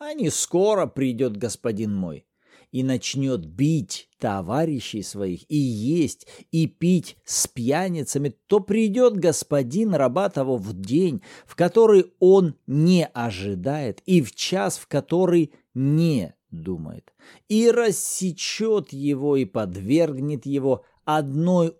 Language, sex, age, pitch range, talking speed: Russian, male, 50-69, 130-185 Hz, 115 wpm